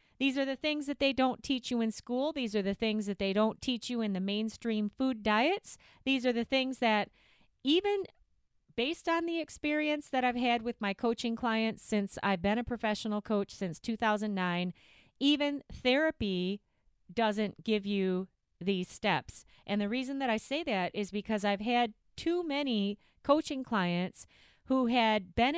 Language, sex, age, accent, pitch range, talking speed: English, female, 40-59, American, 210-265 Hz, 175 wpm